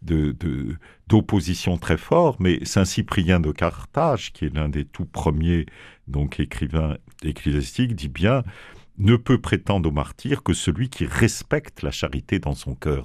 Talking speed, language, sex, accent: 160 wpm, French, male, French